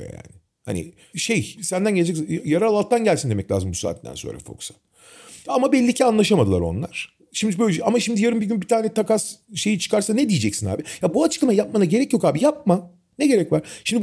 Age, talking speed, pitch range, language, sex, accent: 40-59, 195 wpm, 150-240 Hz, Turkish, male, native